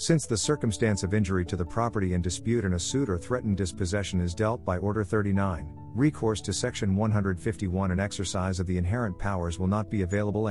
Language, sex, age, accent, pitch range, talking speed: English, male, 50-69, American, 90-115 Hz, 200 wpm